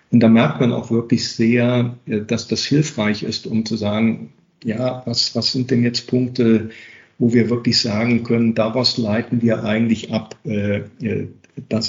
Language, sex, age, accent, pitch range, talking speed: German, male, 50-69, German, 110-125 Hz, 165 wpm